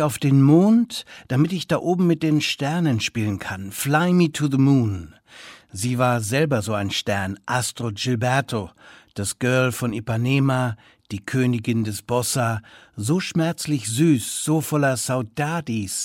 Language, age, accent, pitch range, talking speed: German, 60-79, German, 115-150 Hz, 145 wpm